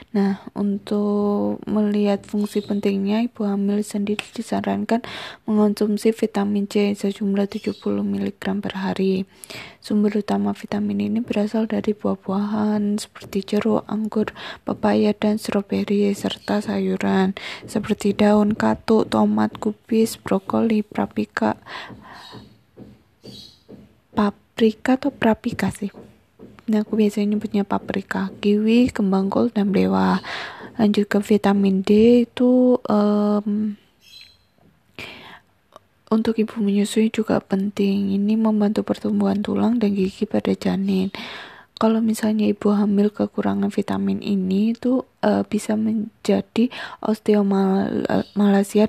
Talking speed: 100 wpm